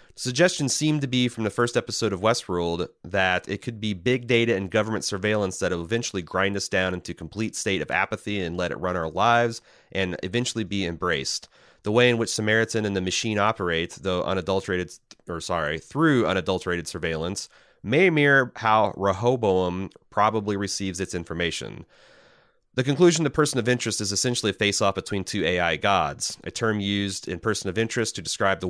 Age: 30-49